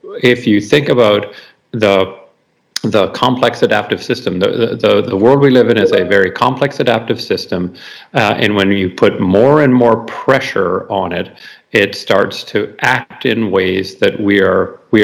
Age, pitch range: 50-69, 105-130 Hz